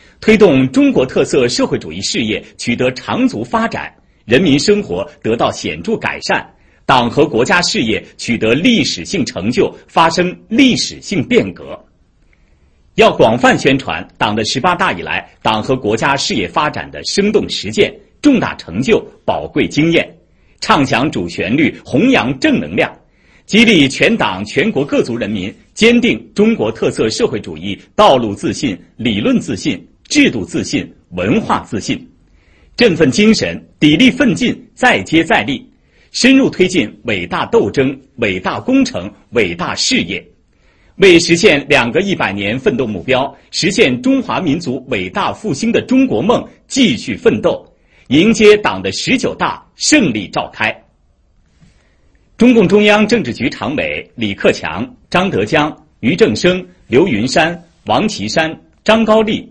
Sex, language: male, English